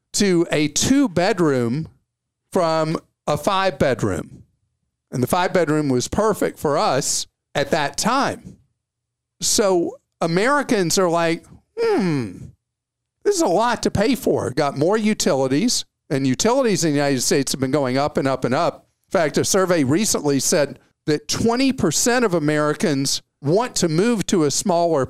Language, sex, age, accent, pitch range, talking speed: English, male, 50-69, American, 140-205 Hz, 145 wpm